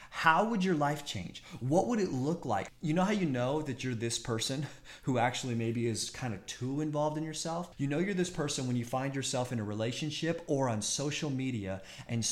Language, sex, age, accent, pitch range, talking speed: English, male, 30-49, American, 120-160 Hz, 225 wpm